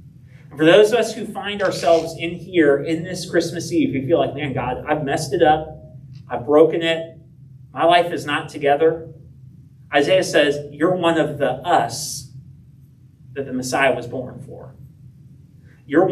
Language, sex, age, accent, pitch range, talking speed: English, male, 30-49, American, 135-155 Hz, 165 wpm